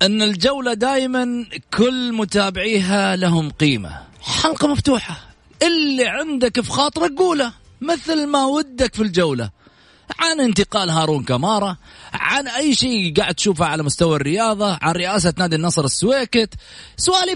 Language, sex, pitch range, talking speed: English, male, 140-230 Hz, 130 wpm